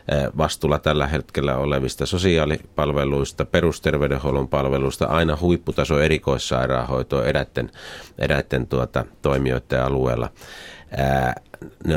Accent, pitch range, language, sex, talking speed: native, 70-80 Hz, Finnish, male, 70 wpm